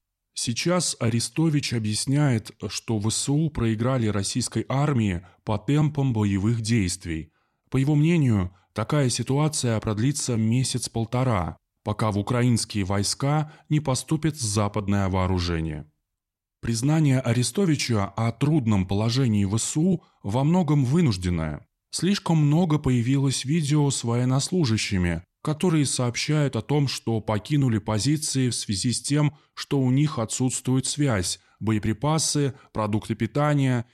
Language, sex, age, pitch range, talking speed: Russian, male, 20-39, 110-150 Hz, 110 wpm